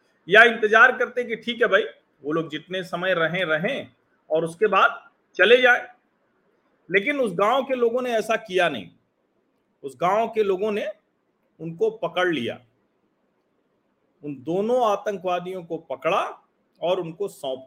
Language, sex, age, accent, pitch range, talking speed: Hindi, male, 40-59, native, 145-215 Hz, 145 wpm